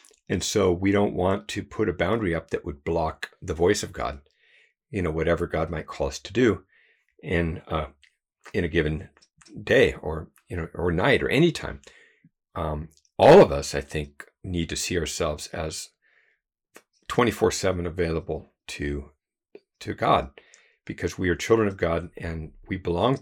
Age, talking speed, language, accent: 50-69, 170 wpm, English, American